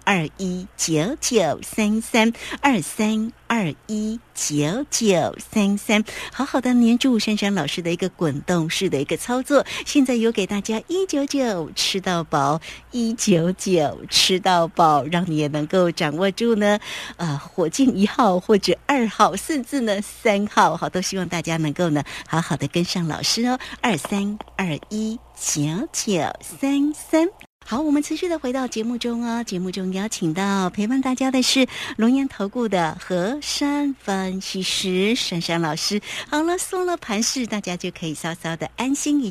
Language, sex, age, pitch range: Chinese, female, 60-79, 175-250 Hz